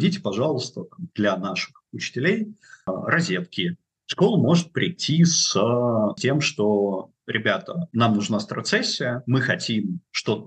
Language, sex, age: Russian, male, 30-49